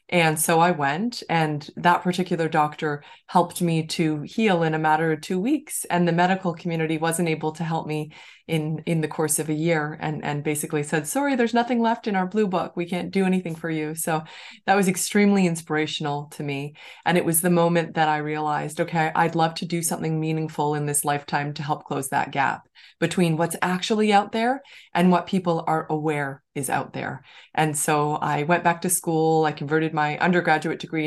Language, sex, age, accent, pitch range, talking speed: English, female, 20-39, American, 150-175 Hz, 210 wpm